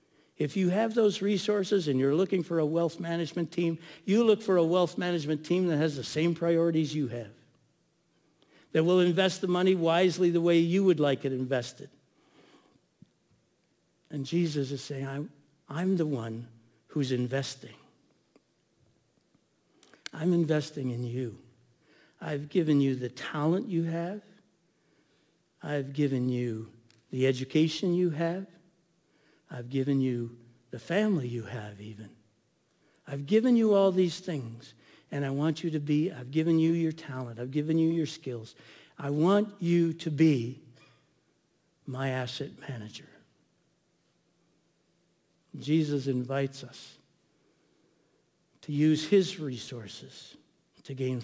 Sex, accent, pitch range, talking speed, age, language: male, American, 130-170 Hz, 135 wpm, 60-79, English